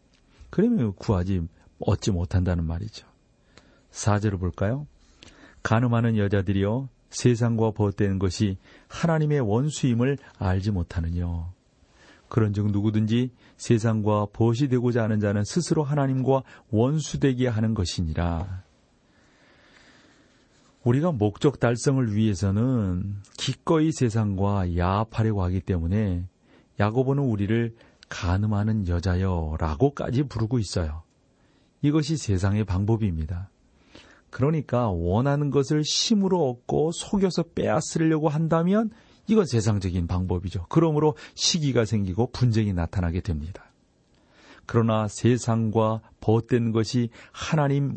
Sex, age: male, 40-59